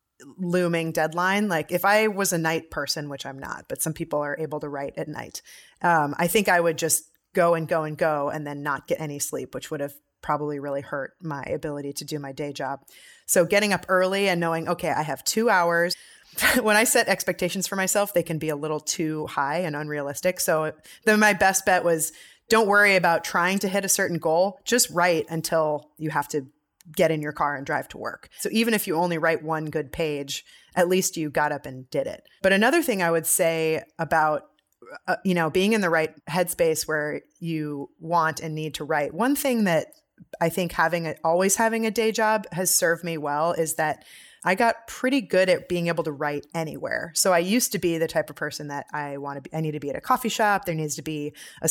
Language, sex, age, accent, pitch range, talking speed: English, female, 20-39, American, 155-185 Hz, 230 wpm